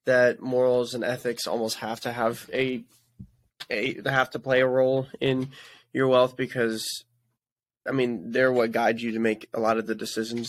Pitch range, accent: 115-130 Hz, American